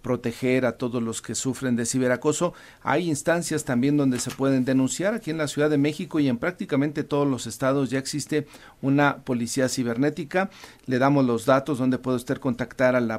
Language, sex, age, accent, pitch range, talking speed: Spanish, male, 50-69, Mexican, 120-140 Hz, 190 wpm